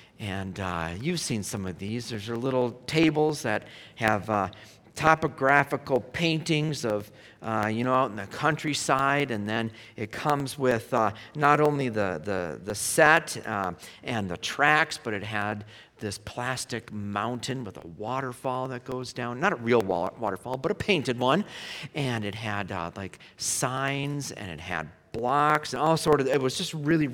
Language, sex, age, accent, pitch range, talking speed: English, male, 50-69, American, 115-165 Hz, 175 wpm